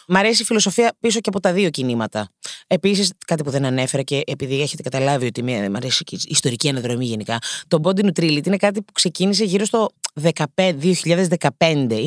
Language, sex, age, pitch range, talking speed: Greek, female, 20-39, 150-220 Hz, 180 wpm